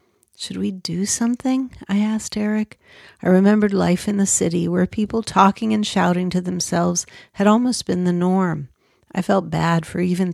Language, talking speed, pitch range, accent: English, 175 wpm, 165-200 Hz, American